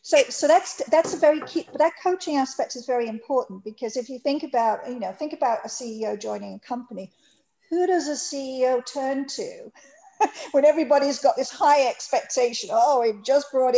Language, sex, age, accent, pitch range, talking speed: English, female, 50-69, Australian, 225-295 Hz, 190 wpm